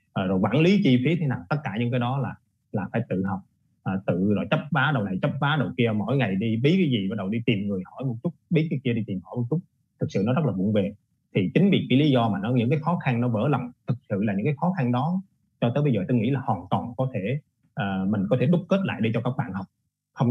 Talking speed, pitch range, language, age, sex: 305 wpm, 110-145 Hz, Vietnamese, 20-39, male